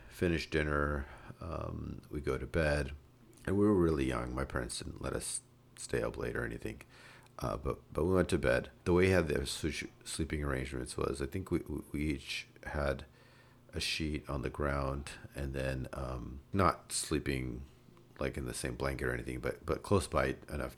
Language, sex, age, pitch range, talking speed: English, male, 40-59, 65-80 Hz, 190 wpm